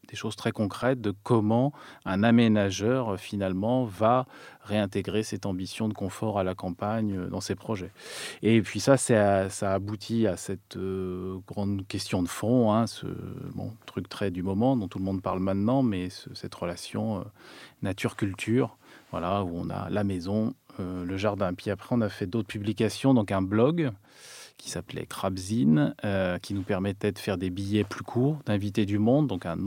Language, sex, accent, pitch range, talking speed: French, male, French, 95-110 Hz, 190 wpm